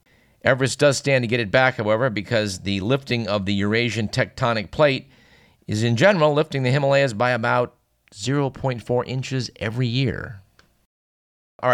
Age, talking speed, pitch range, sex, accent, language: 50-69, 150 wpm, 105-125 Hz, male, American, English